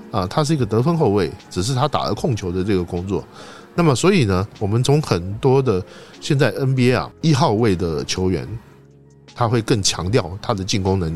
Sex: male